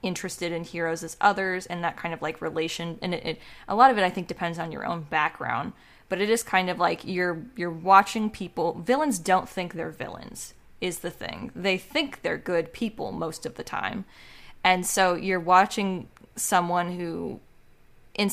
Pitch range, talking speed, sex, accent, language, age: 170-195 Hz, 195 wpm, female, American, English, 20-39